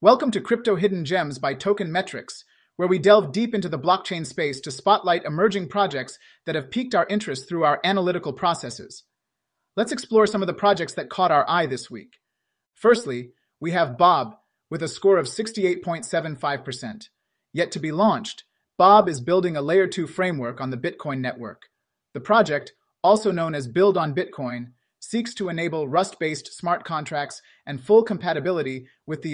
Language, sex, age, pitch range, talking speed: English, male, 30-49, 145-200 Hz, 170 wpm